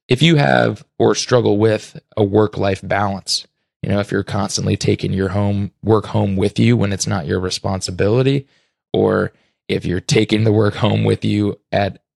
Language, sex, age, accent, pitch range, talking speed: English, male, 20-39, American, 100-115 Hz, 185 wpm